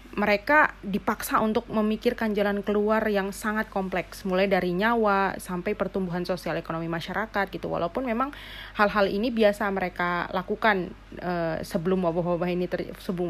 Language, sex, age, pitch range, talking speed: Indonesian, female, 30-49, 180-215 Hz, 140 wpm